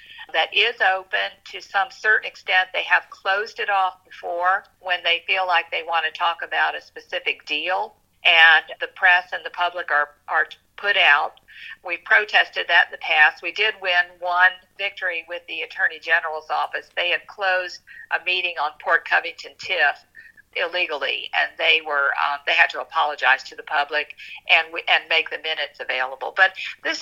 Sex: female